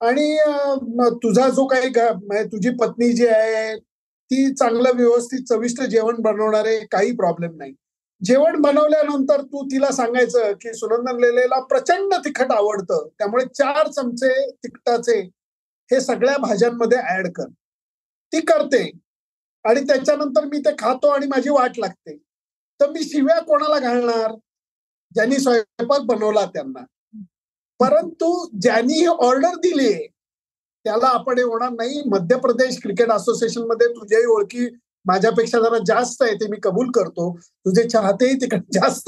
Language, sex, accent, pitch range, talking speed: Marathi, male, native, 220-285 Hz, 135 wpm